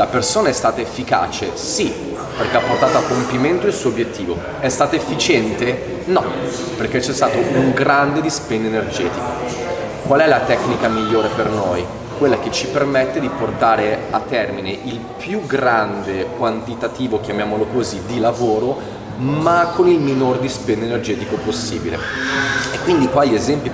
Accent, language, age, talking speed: native, Italian, 30-49, 150 wpm